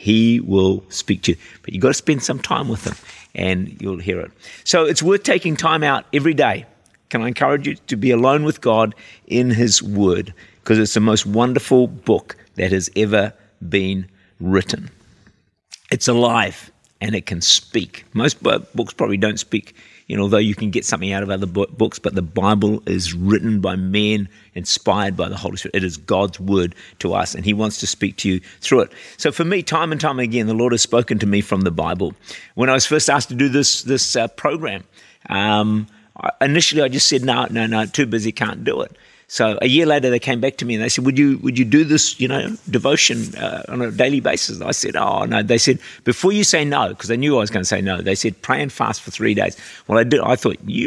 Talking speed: 230 wpm